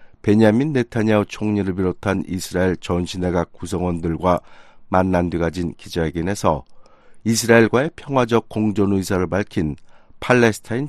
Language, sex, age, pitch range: Korean, male, 50-69, 90-115 Hz